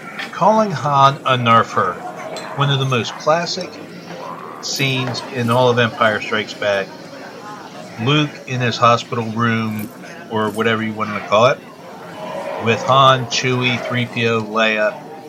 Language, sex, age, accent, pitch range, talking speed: English, male, 40-59, American, 110-130 Hz, 135 wpm